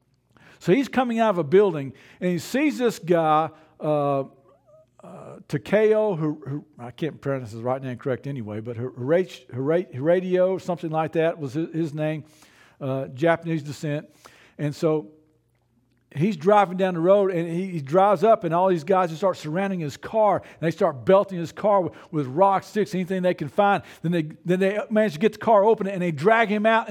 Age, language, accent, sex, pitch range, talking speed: 50-69, English, American, male, 155-220 Hz, 205 wpm